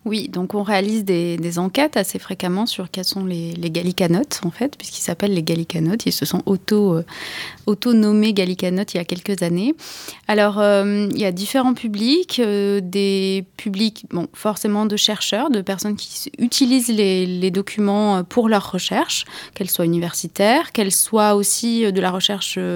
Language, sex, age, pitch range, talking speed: French, female, 20-39, 180-220 Hz, 170 wpm